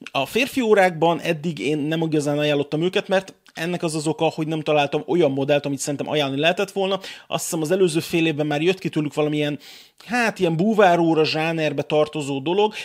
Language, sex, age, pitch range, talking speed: Hungarian, male, 30-49, 140-165 Hz, 190 wpm